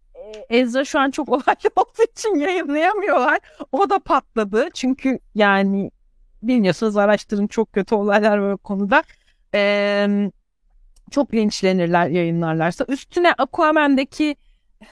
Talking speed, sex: 105 wpm, female